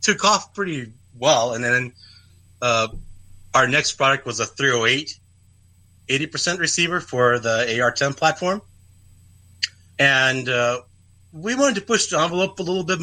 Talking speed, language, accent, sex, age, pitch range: 140 wpm, English, American, male, 30-49, 95-150 Hz